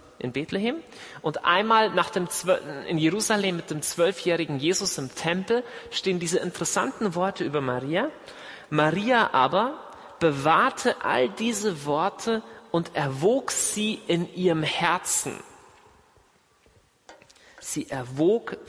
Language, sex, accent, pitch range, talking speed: German, male, German, 155-210 Hz, 110 wpm